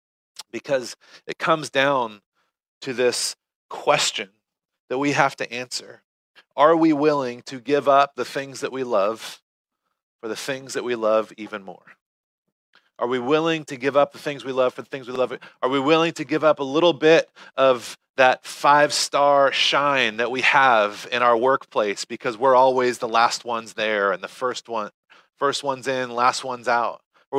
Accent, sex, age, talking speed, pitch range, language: American, male, 30-49, 185 wpm, 130-155 Hz, English